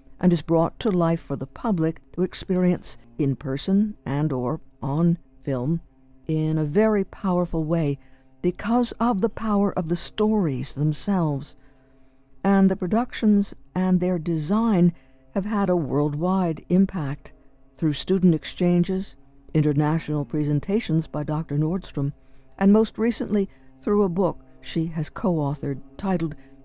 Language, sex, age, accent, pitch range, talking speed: English, female, 60-79, American, 140-195 Hz, 130 wpm